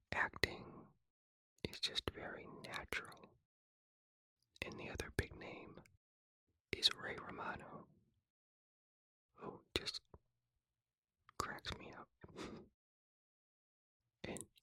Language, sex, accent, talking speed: English, male, American, 80 wpm